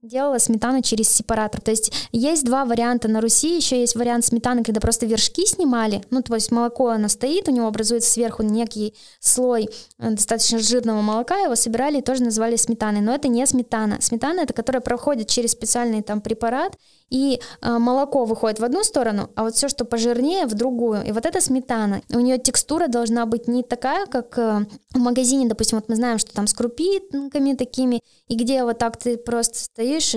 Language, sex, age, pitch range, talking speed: Russian, female, 10-29, 220-255 Hz, 190 wpm